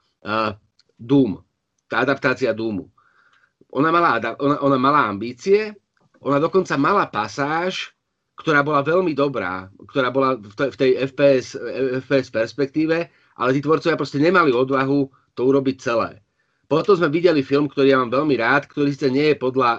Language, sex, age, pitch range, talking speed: Slovak, male, 30-49, 125-150 Hz, 145 wpm